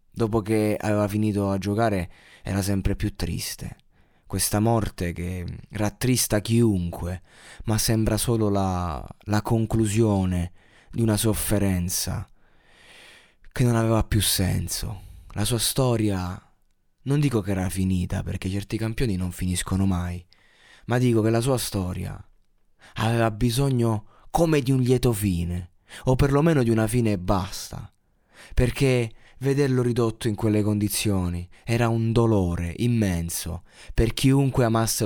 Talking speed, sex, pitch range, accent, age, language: 130 wpm, male, 95-130 Hz, native, 20-39, Italian